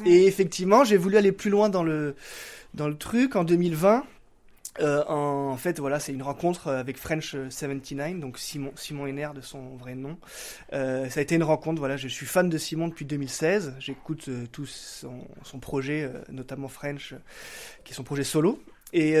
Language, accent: French, French